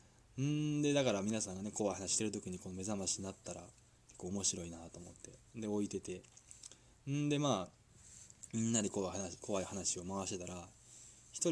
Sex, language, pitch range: male, Japanese, 100-130 Hz